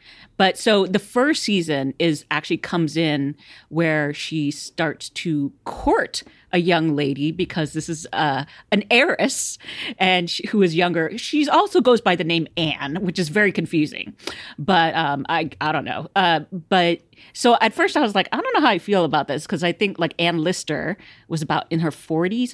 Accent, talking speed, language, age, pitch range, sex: American, 190 wpm, English, 40-59, 150-195 Hz, female